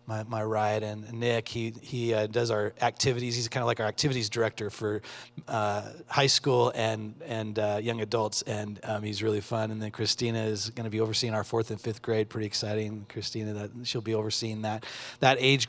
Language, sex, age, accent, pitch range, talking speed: English, male, 30-49, American, 105-120 Hz, 210 wpm